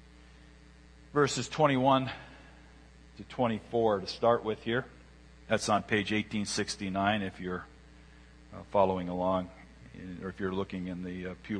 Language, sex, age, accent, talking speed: English, male, 50-69, American, 120 wpm